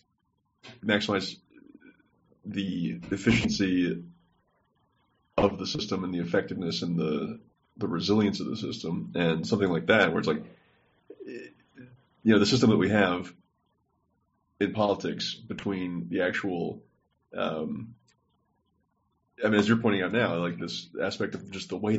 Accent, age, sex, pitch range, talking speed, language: American, 30-49, male, 85-105 Hz, 135 wpm, English